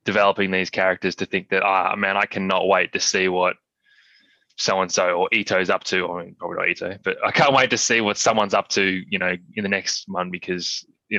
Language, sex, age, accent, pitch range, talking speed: English, male, 20-39, Australian, 95-120 Hz, 225 wpm